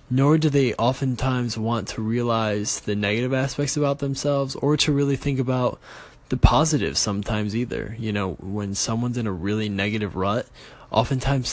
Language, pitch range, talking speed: English, 105-125 Hz, 160 wpm